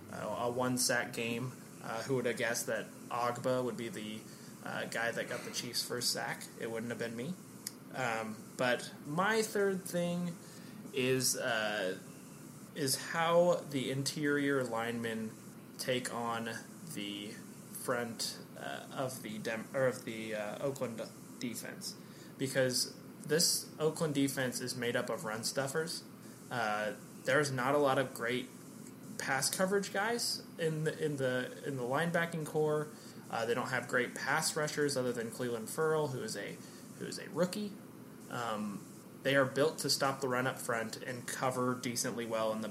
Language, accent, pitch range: English, American, 115-145 Hz